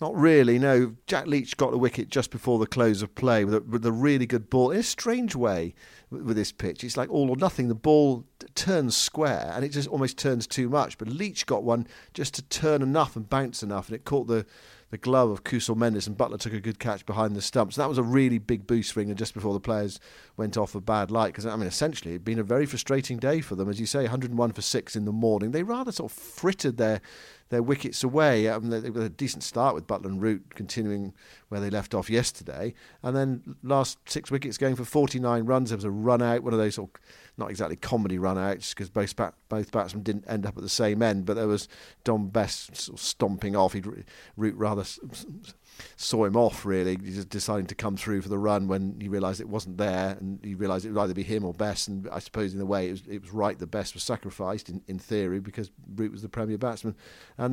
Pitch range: 105-130 Hz